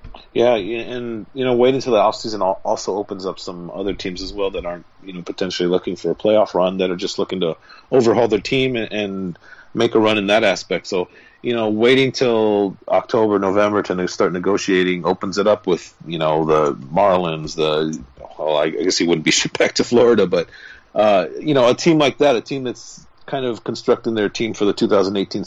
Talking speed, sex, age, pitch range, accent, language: 210 wpm, male, 40-59, 85-105 Hz, American, English